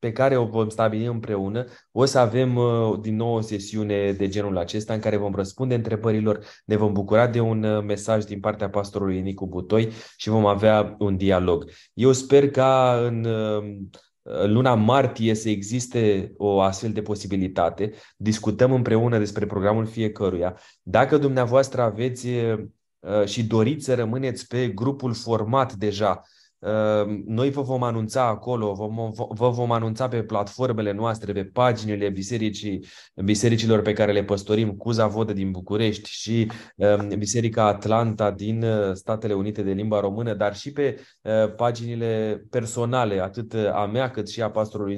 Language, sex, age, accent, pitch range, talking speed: Romanian, male, 20-39, native, 105-120 Hz, 145 wpm